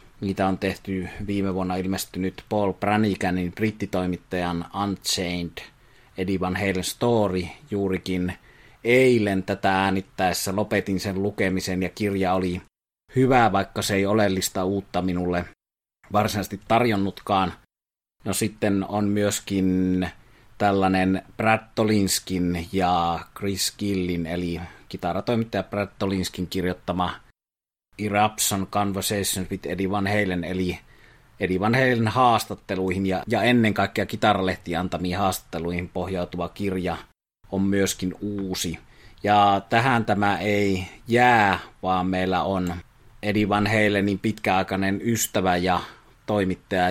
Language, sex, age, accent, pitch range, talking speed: Finnish, male, 30-49, native, 90-105 Hz, 105 wpm